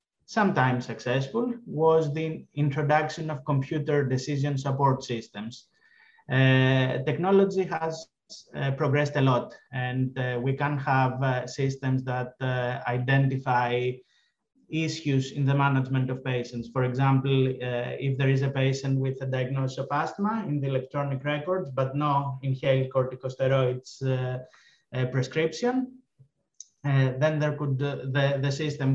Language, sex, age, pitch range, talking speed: English, male, 30-49, 130-145 Hz, 130 wpm